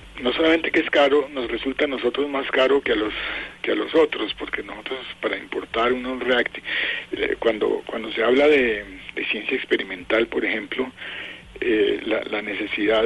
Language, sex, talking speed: Spanish, male, 185 wpm